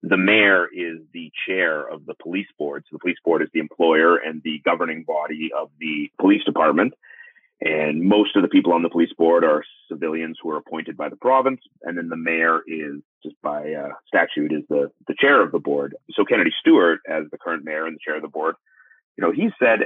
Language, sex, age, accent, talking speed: English, male, 30-49, American, 225 wpm